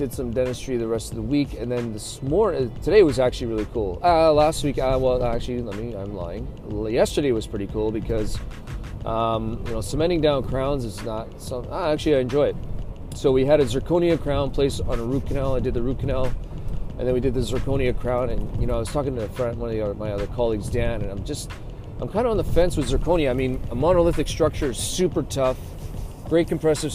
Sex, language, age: male, English, 30-49